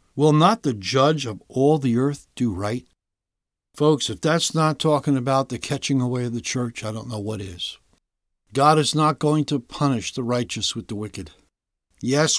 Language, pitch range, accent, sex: English, 105-150 Hz, American, male